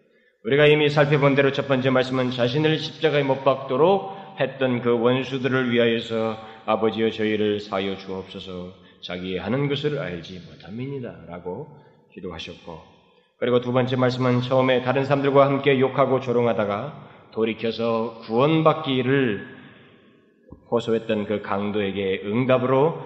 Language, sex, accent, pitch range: Korean, male, native, 105-140 Hz